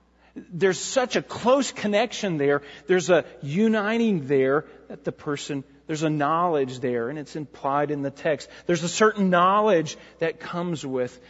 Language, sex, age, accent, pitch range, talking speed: English, male, 40-59, American, 140-195 Hz, 160 wpm